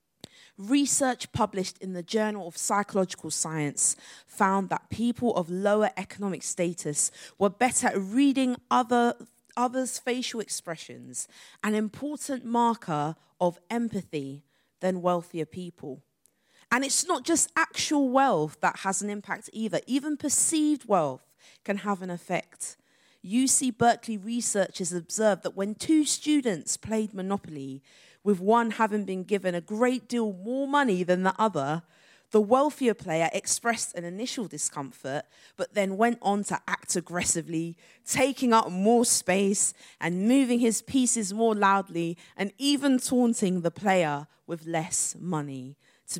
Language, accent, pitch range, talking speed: English, British, 175-240 Hz, 135 wpm